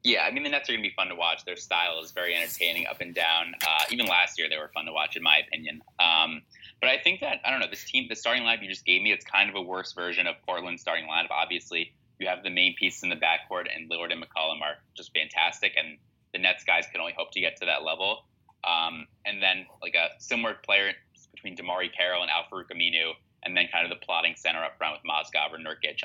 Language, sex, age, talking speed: English, male, 20-39, 260 wpm